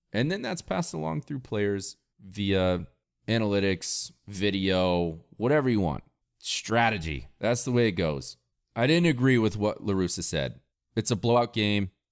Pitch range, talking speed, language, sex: 90-125 Hz, 150 wpm, English, male